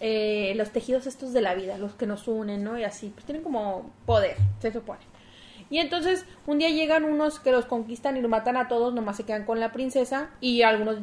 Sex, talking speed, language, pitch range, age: female, 230 wpm, Spanish, 220-265 Hz, 30-49